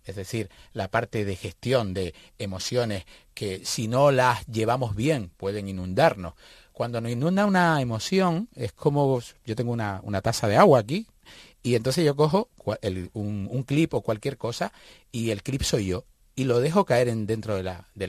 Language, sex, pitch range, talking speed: Spanish, male, 100-150 Hz, 175 wpm